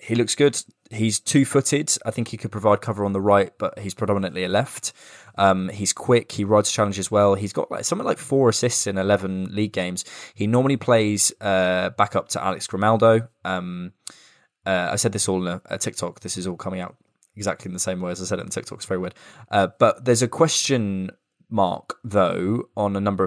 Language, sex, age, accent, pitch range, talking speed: English, male, 20-39, British, 95-115 Hz, 225 wpm